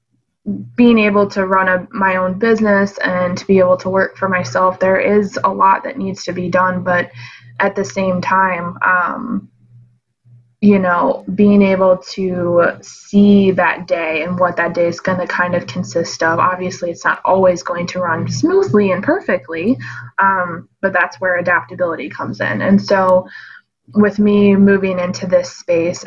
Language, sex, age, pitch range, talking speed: English, female, 20-39, 175-190 Hz, 170 wpm